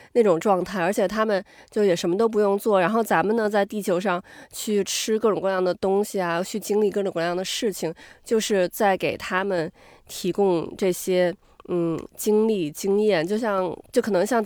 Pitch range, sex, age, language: 180-225 Hz, female, 20-39, Chinese